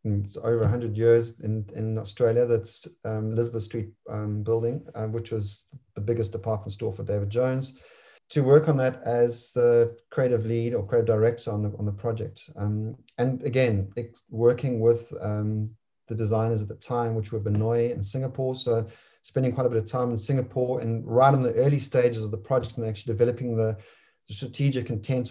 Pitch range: 110-125 Hz